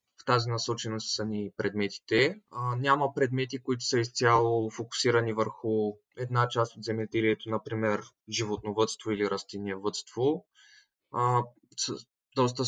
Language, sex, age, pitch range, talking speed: Bulgarian, male, 20-39, 110-125 Hz, 115 wpm